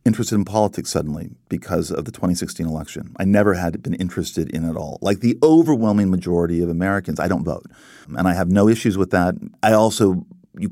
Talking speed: 200 wpm